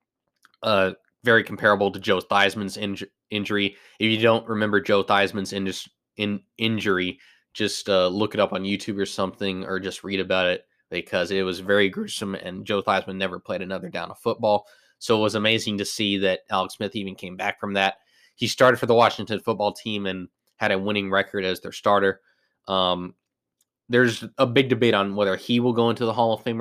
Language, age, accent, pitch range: English, 20-39, American, 95-115 Hz